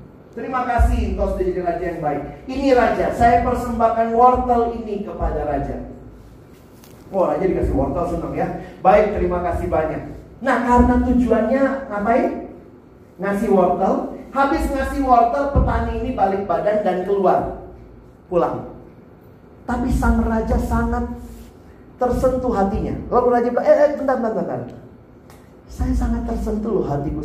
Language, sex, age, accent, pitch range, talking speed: Indonesian, male, 30-49, native, 155-245 Hz, 130 wpm